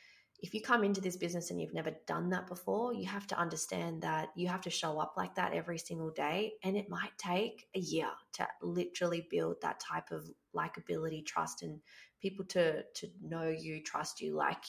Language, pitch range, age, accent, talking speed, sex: English, 160-195 Hz, 20-39, Australian, 205 wpm, female